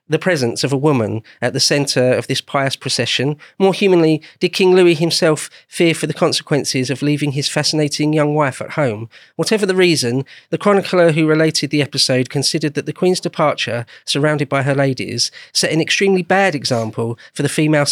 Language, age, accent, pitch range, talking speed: English, 40-59, British, 130-165 Hz, 190 wpm